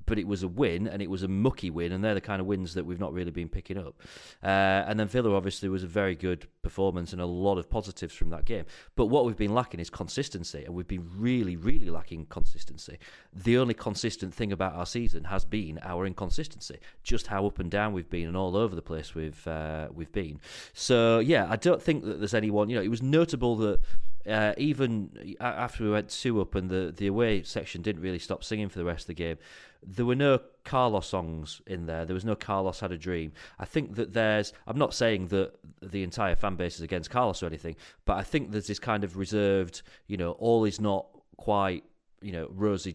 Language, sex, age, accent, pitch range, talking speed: English, male, 30-49, British, 85-105 Hz, 230 wpm